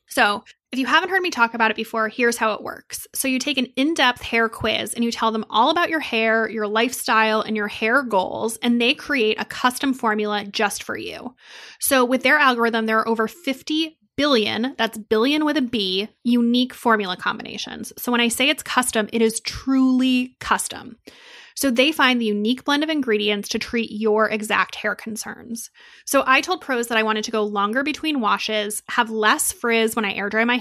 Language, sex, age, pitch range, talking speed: English, female, 20-39, 215-255 Hz, 205 wpm